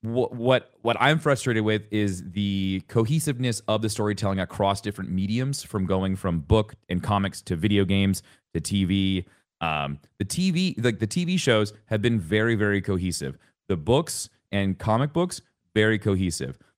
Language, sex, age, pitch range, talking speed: English, male, 30-49, 95-135 Hz, 160 wpm